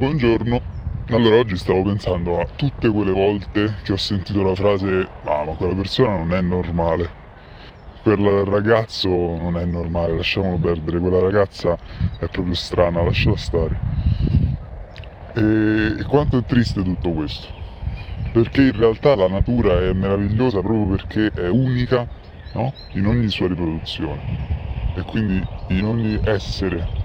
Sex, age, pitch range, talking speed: female, 20-39, 90-115 Hz, 135 wpm